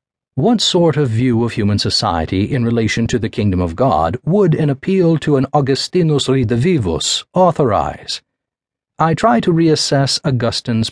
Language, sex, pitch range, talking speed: English, male, 110-150 Hz, 150 wpm